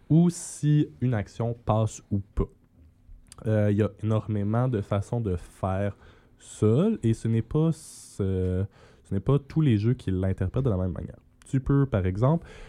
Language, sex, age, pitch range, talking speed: French, male, 20-39, 95-125 Hz, 180 wpm